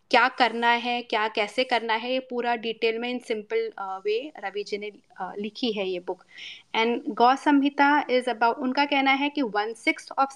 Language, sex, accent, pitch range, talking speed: Hindi, female, native, 215-265 Hz, 190 wpm